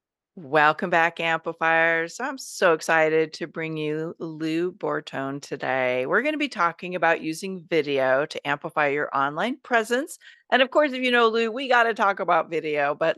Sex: female